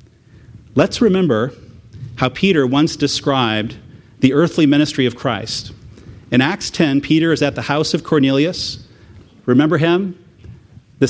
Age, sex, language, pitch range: 40-59, male, English, 120-175 Hz